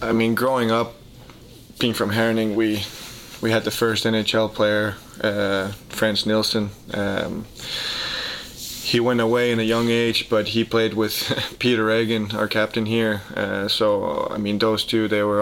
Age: 20-39